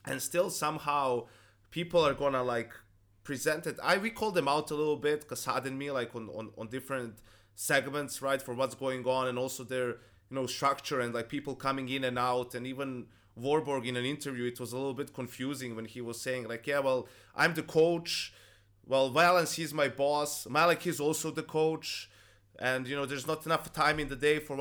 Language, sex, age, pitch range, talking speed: English, male, 20-39, 120-150 Hz, 210 wpm